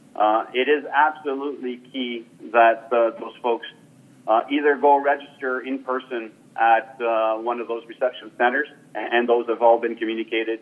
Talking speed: 160 wpm